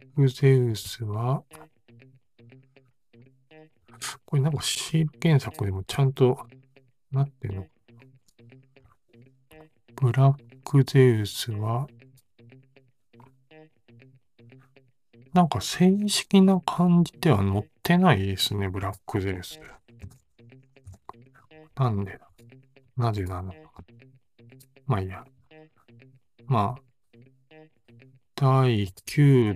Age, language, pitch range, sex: 40-59, Japanese, 110-130 Hz, male